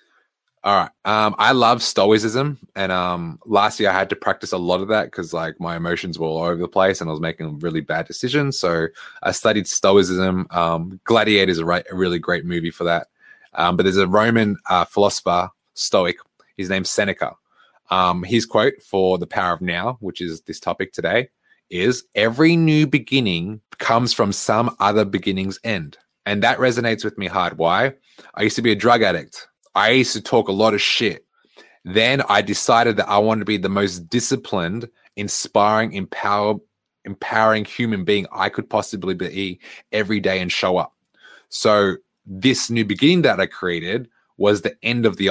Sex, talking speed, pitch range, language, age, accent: male, 185 wpm, 90-110 Hz, English, 20-39, Australian